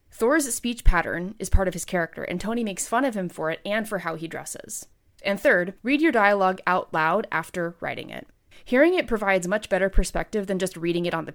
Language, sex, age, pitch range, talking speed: English, female, 20-39, 175-220 Hz, 225 wpm